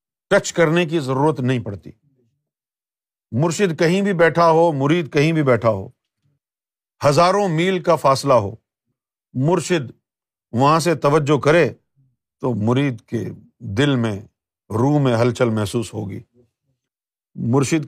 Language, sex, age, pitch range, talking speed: Urdu, male, 50-69, 125-175 Hz, 125 wpm